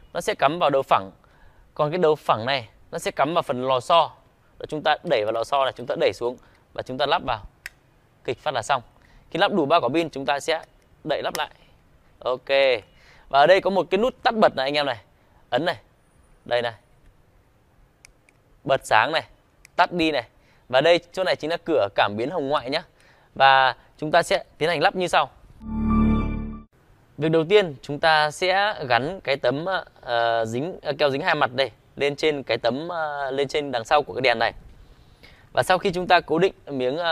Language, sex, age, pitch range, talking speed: Vietnamese, male, 20-39, 125-165 Hz, 215 wpm